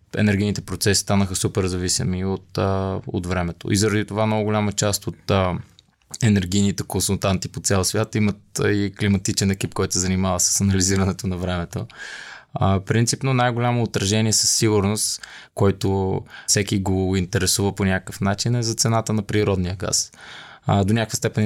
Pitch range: 95-110 Hz